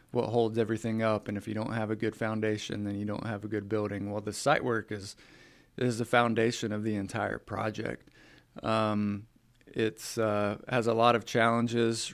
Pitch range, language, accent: 105-115 Hz, English, American